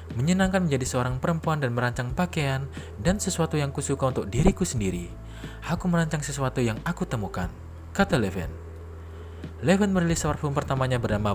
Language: English